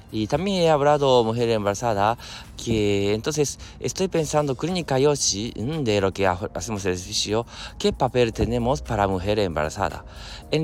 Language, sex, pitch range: Japanese, male, 95-115 Hz